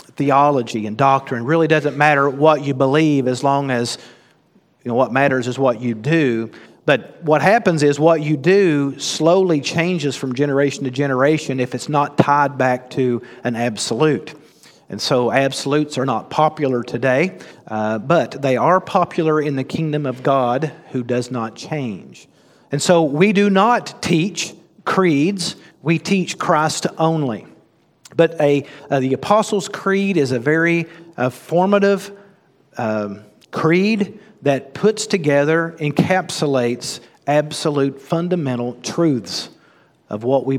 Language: English